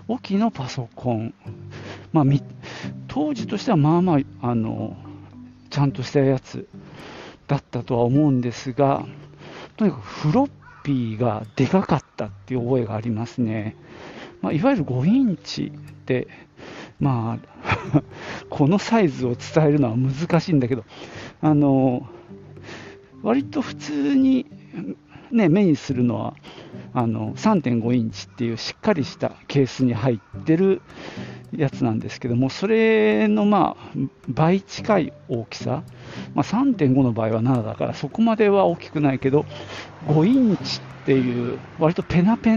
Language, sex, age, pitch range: Japanese, male, 50-69, 120-165 Hz